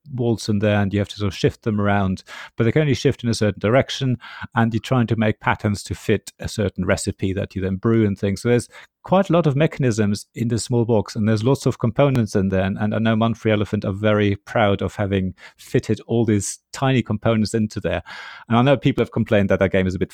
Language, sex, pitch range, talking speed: English, male, 100-120 Hz, 255 wpm